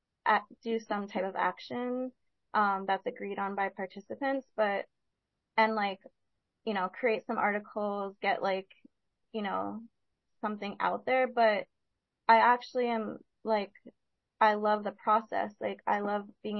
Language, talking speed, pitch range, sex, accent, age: English, 140 wpm, 190-215 Hz, female, American, 20-39